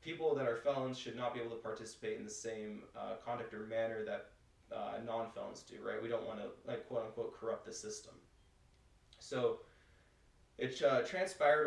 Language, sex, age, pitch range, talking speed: English, male, 20-39, 110-135 Hz, 180 wpm